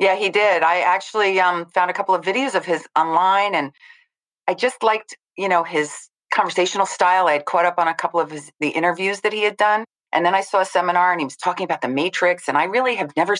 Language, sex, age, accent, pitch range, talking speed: English, female, 40-59, American, 155-190 Hz, 245 wpm